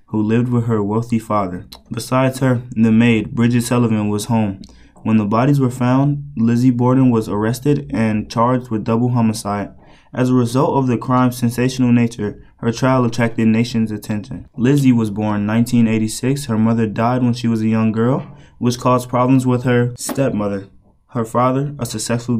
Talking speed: 175 wpm